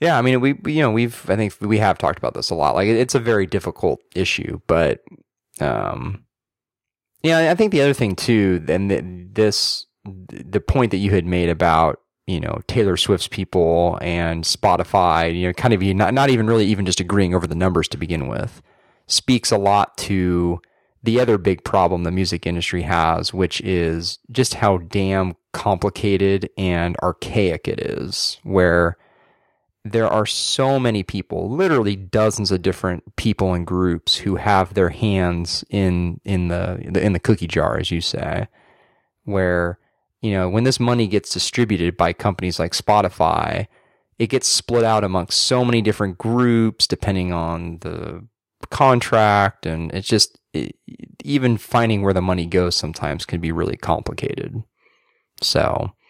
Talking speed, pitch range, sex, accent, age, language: 165 wpm, 90-110 Hz, male, American, 30-49, English